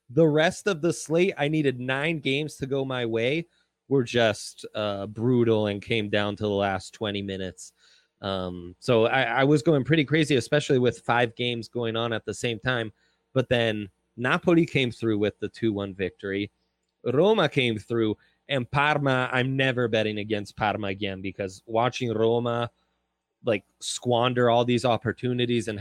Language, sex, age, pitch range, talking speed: English, male, 20-39, 110-135 Hz, 165 wpm